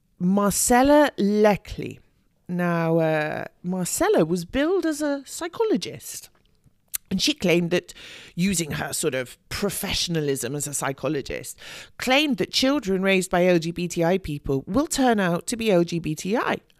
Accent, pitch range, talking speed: British, 170-245 Hz, 125 wpm